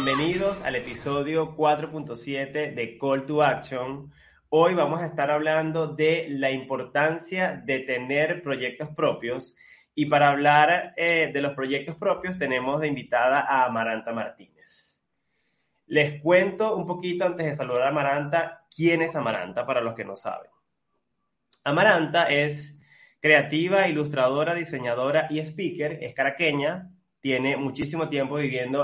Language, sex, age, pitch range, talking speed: Spanish, male, 20-39, 135-165 Hz, 135 wpm